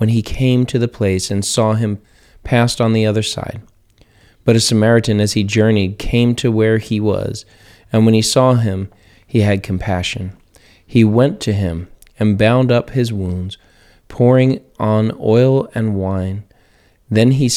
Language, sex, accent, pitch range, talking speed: English, male, American, 100-120 Hz, 165 wpm